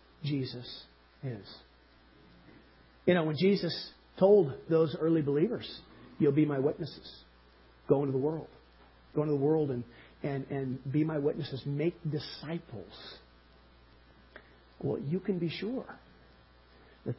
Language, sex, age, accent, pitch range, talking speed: English, male, 50-69, American, 125-190 Hz, 125 wpm